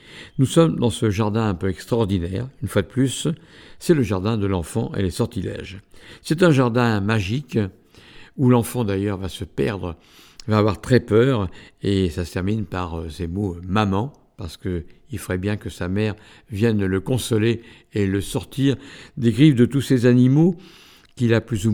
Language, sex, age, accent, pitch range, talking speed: French, male, 60-79, French, 100-120 Hz, 180 wpm